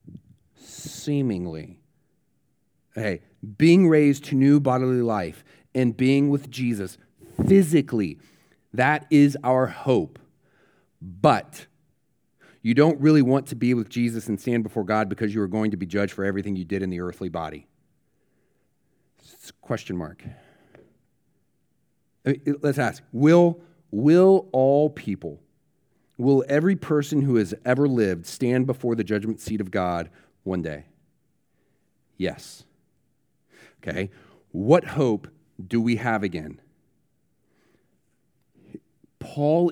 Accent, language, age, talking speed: American, English, 40-59, 120 wpm